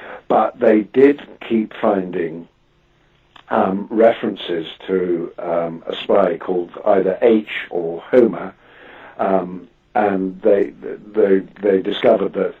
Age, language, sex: 50-69, English, male